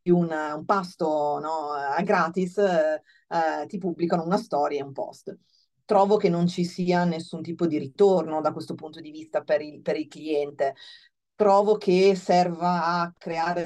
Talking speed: 165 wpm